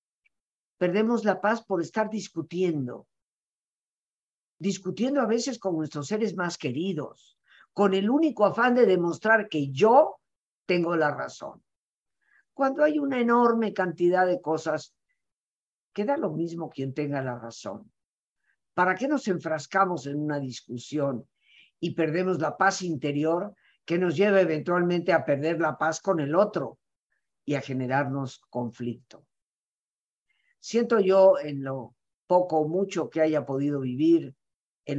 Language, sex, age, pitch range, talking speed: Spanish, female, 50-69, 140-200 Hz, 130 wpm